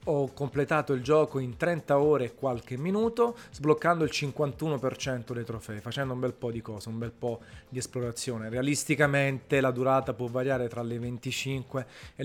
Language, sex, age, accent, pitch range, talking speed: Italian, male, 30-49, native, 120-150 Hz, 170 wpm